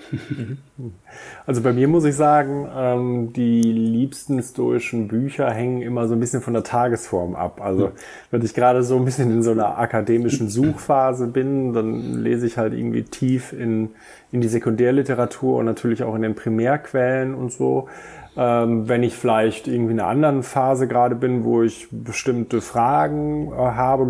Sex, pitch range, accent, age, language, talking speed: male, 115-130 Hz, German, 30-49, German, 160 wpm